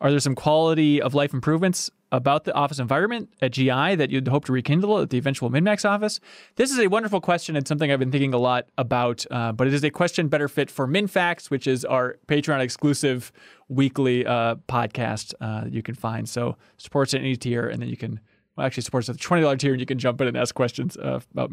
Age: 20-39